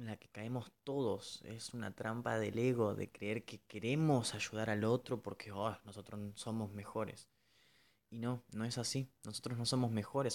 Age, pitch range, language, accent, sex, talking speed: 20-39, 105-125 Hz, Spanish, Argentinian, male, 180 wpm